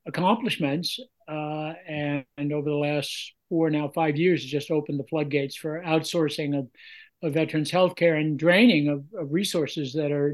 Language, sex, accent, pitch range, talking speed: English, male, American, 150-185 Hz, 170 wpm